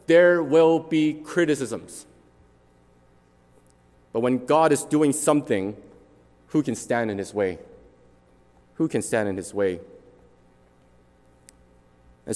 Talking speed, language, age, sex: 110 wpm, English, 30-49, male